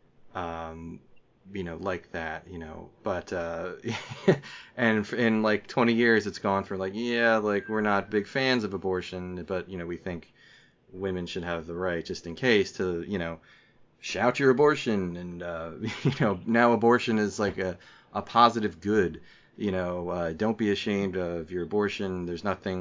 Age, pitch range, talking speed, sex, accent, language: 30-49, 85-105 Hz, 180 wpm, male, American, English